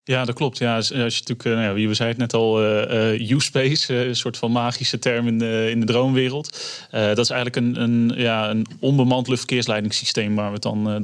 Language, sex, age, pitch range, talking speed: Dutch, male, 20-39, 115-125 Hz, 220 wpm